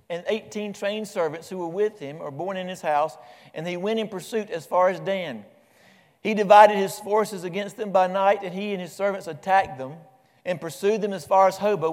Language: English